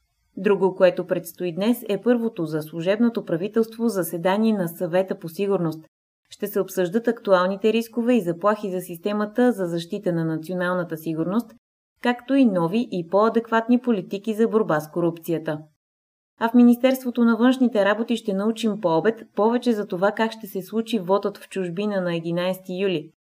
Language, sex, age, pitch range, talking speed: Bulgarian, female, 20-39, 175-225 Hz, 155 wpm